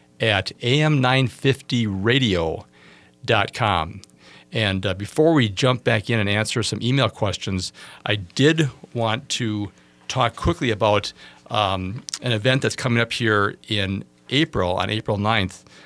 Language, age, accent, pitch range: English, 50-69, American, 100-120 Hz